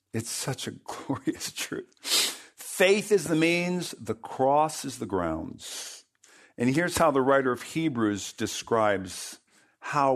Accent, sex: American, male